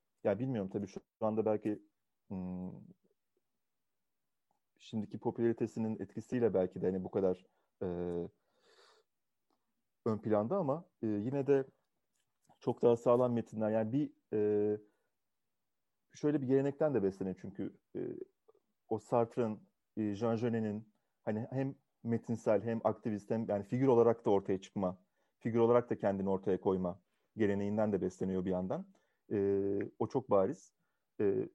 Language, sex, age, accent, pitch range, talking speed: Turkish, male, 40-59, native, 105-130 Hz, 130 wpm